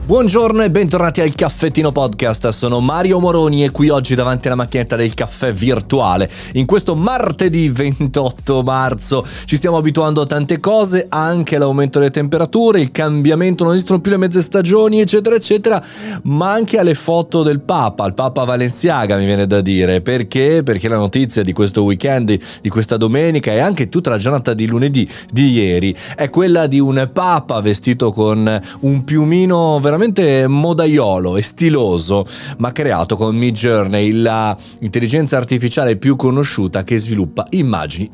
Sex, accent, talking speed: male, native, 160 wpm